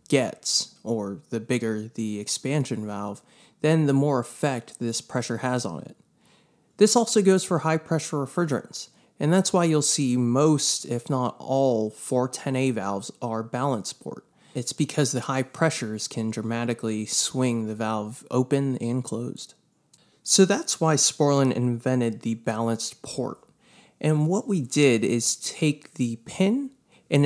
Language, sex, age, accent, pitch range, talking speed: English, male, 20-39, American, 115-150 Hz, 145 wpm